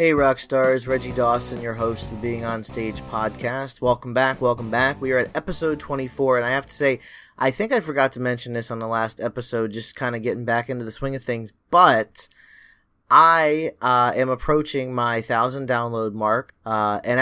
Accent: American